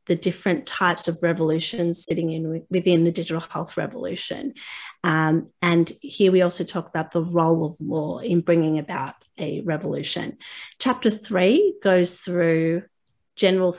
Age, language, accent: 30-49, English, Australian